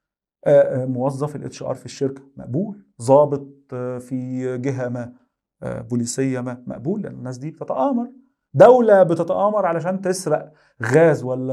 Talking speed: 120 wpm